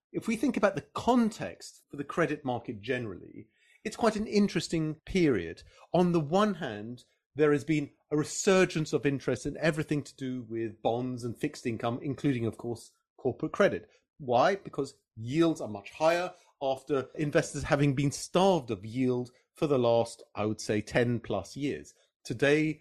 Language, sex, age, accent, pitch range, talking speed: English, male, 30-49, British, 115-160 Hz, 170 wpm